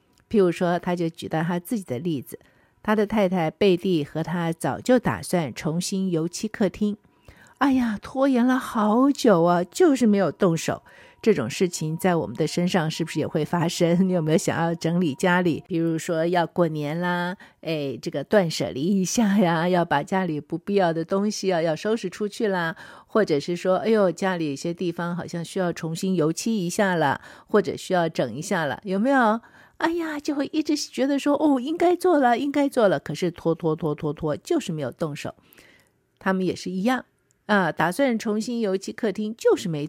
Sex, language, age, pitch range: female, Chinese, 50-69, 165-210 Hz